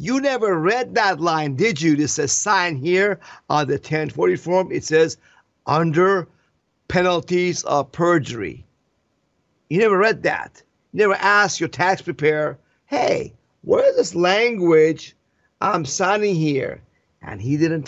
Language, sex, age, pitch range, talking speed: English, male, 50-69, 145-185 Hz, 140 wpm